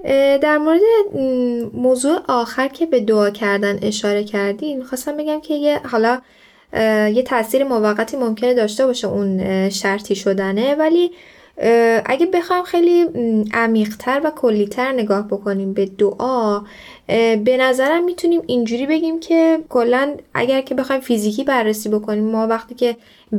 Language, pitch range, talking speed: Persian, 205-260 Hz, 130 wpm